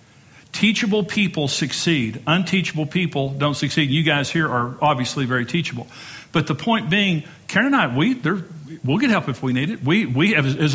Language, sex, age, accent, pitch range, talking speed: English, male, 50-69, American, 135-170 Hz, 185 wpm